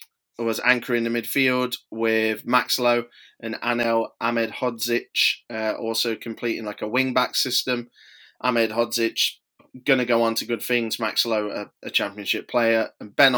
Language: English